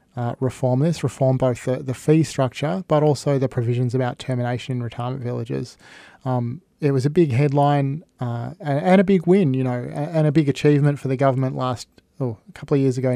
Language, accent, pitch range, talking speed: English, Australian, 125-145 Hz, 210 wpm